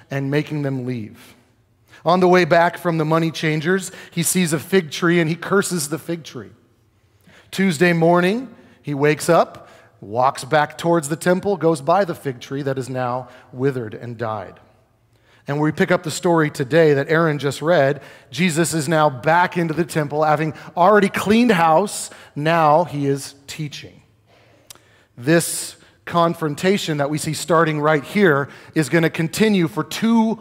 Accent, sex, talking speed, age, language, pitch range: American, male, 165 wpm, 40-59, English, 120-170 Hz